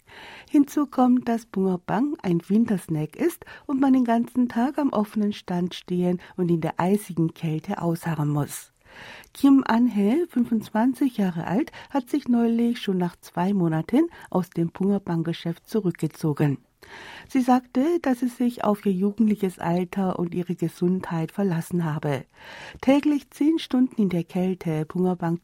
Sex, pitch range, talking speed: female, 170-245 Hz, 140 wpm